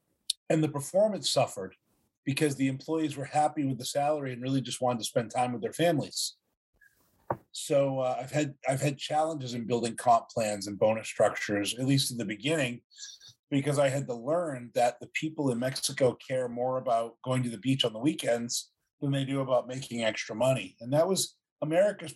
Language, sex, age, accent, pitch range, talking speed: English, male, 40-59, American, 125-150 Hz, 190 wpm